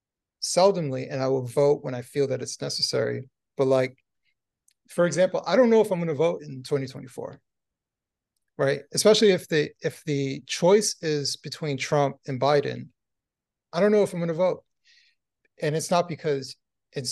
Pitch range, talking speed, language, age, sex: 135-180 Hz, 170 wpm, English, 30-49, male